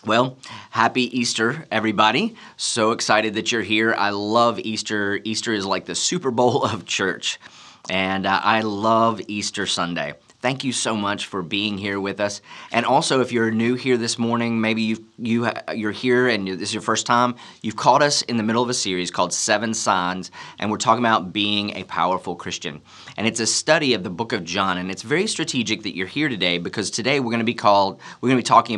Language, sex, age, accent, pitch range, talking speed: English, male, 30-49, American, 95-120 Hz, 205 wpm